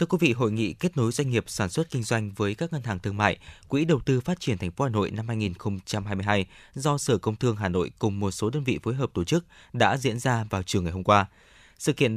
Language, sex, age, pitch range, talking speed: Vietnamese, male, 20-39, 100-140 Hz, 270 wpm